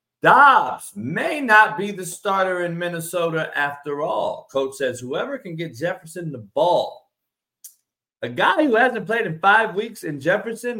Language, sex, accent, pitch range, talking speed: English, male, American, 130-185 Hz, 155 wpm